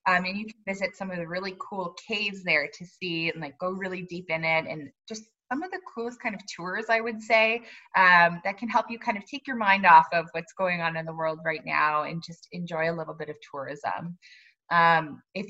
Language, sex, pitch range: English, female, 170-205 Hz